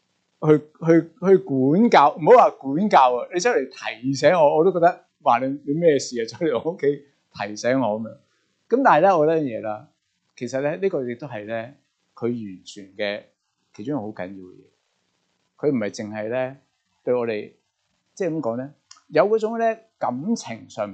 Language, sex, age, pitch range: Chinese, male, 30-49, 110-185 Hz